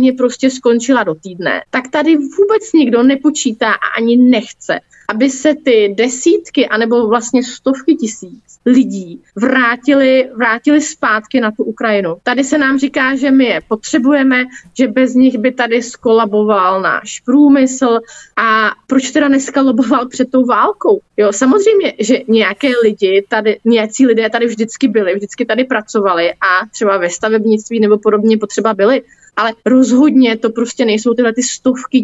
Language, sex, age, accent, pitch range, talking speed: Czech, female, 30-49, native, 220-265 Hz, 150 wpm